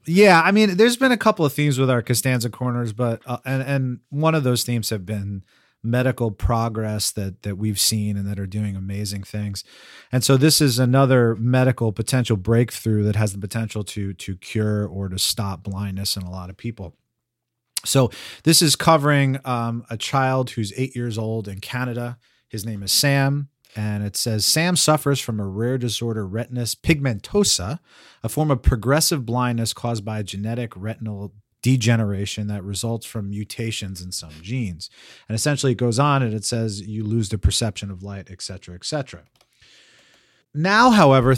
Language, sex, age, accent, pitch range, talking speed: English, male, 30-49, American, 105-130 Hz, 180 wpm